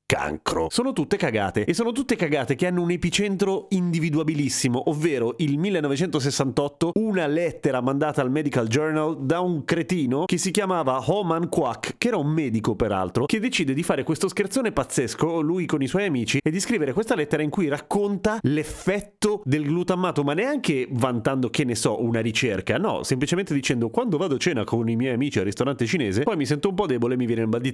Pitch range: 120-175 Hz